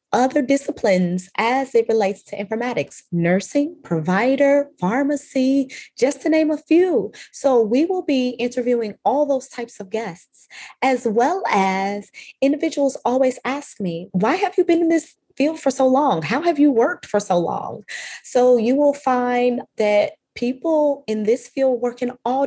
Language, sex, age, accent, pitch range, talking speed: English, female, 30-49, American, 215-275 Hz, 165 wpm